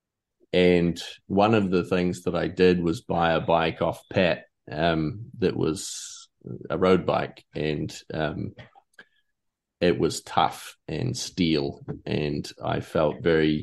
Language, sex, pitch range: English, male, 80-95 Hz